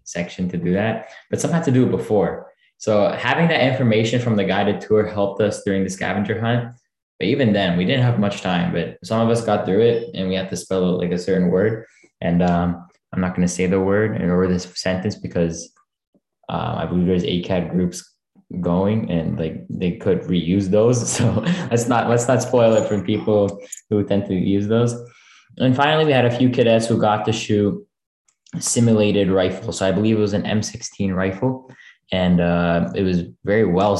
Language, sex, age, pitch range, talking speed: English, male, 20-39, 90-110 Hz, 205 wpm